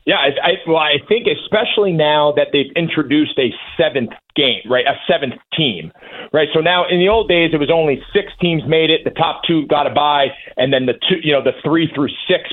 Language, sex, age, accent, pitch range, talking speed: English, male, 30-49, American, 135-175 Hz, 235 wpm